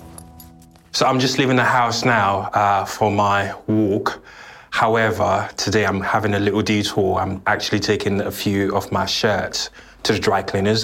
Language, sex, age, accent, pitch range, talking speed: English, male, 20-39, British, 95-110 Hz, 165 wpm